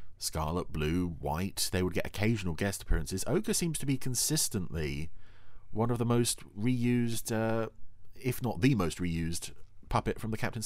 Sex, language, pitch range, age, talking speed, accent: male, English, 85-115 Hz, 40-59, 165 wpm, British